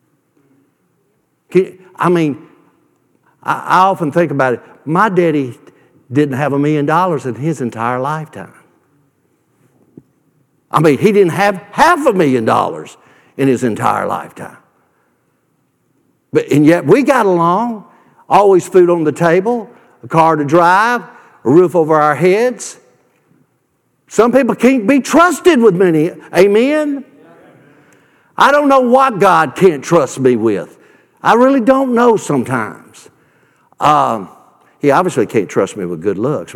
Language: English